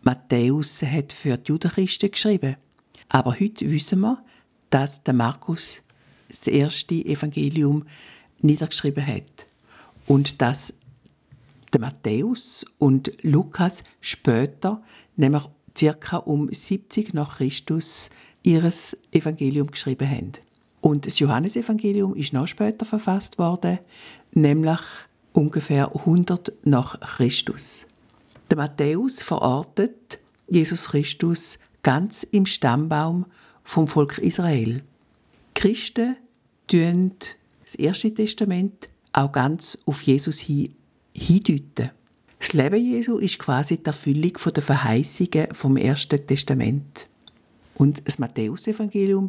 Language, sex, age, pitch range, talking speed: German, female, 60-79, 140-180 Hz, 105 wpm